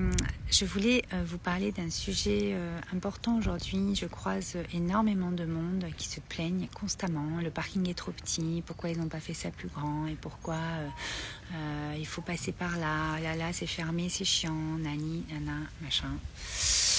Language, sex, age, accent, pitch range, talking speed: French, female, 40-59, French, 155-190 Hz, 165 wpm